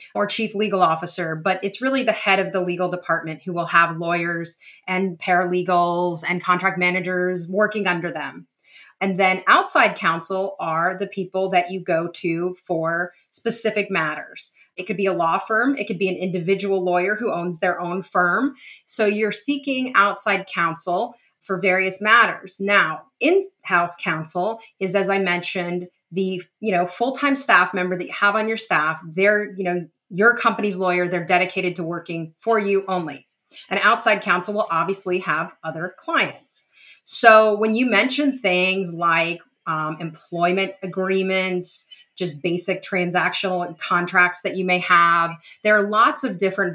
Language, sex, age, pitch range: English, female, 30-49, 175-210 Hz